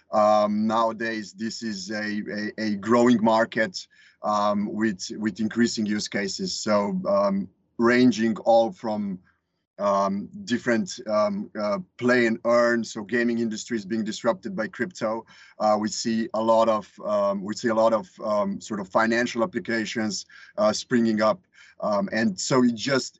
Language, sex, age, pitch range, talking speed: English, male, 30-49, 110-120 Hz, 155 wpm